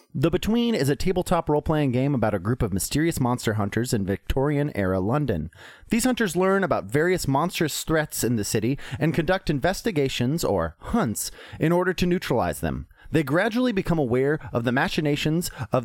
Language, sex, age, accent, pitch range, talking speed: English, male, 30-49, American, 115-170 Hz, 170 wpm